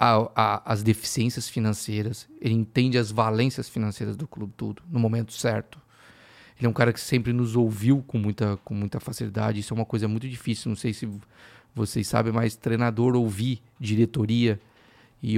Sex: male